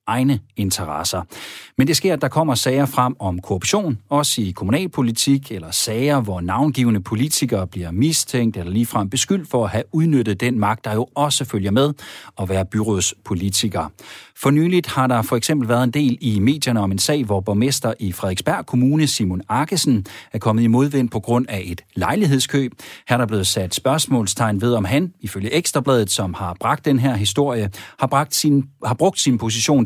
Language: Danish